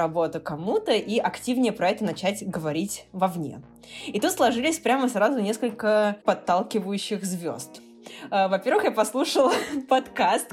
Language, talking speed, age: Russian, 120 wpm, 20-39